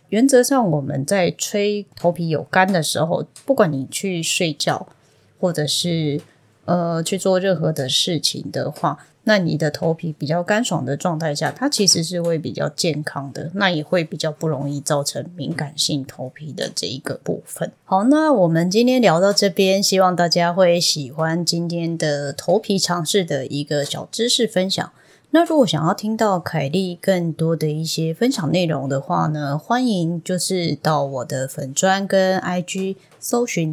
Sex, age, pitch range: female, 20-39, 150-185 Hz